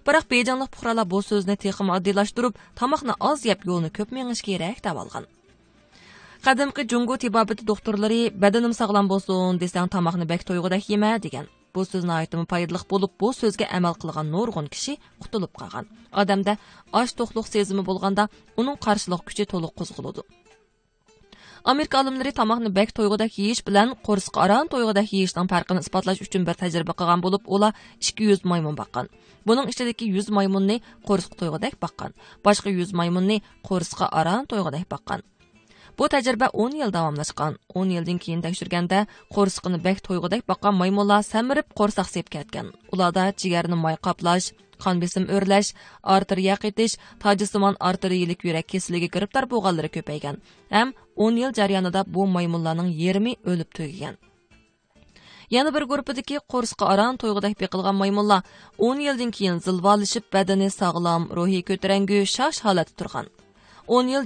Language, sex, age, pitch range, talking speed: English, female, 20-39, 180-220 Hz, 135 wpm